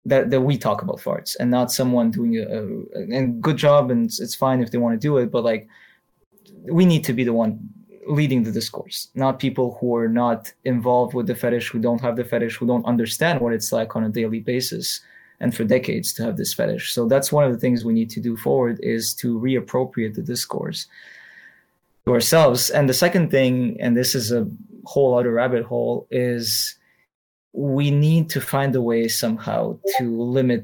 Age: 20-39